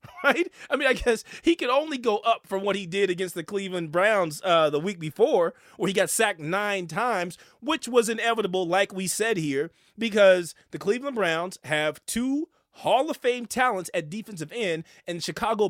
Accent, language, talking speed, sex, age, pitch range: American, English, 195 wpm, male, 30-49, 180-240 Hz